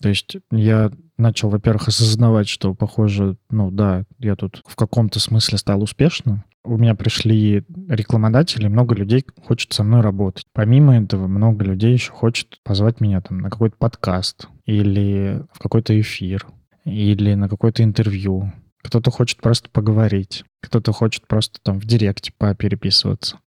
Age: 20-39